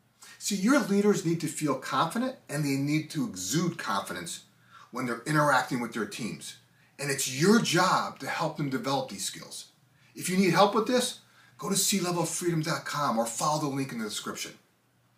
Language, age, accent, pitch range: English, 40-59, American, 140-205 Hz